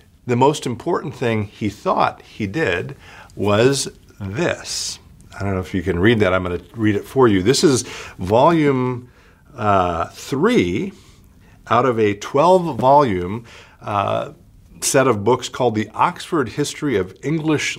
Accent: American